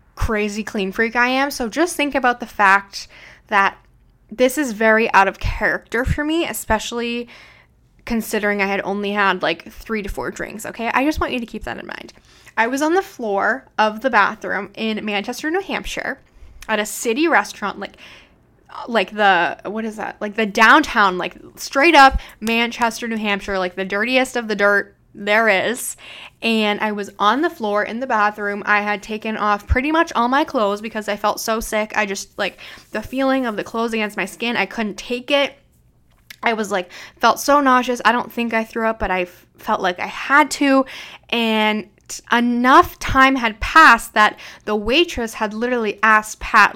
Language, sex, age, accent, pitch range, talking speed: English, female, 10-29, American, 210-255 Hz, 190 wpm